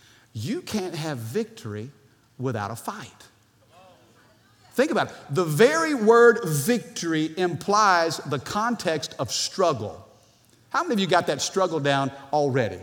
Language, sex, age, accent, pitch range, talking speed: English, male, 50-69, American, 150-230 Hz, 130 wpm